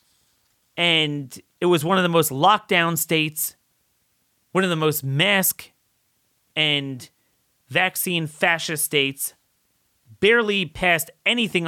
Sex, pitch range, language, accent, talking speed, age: male, 125-165 Hz, English, American, 110 wpm, 30-49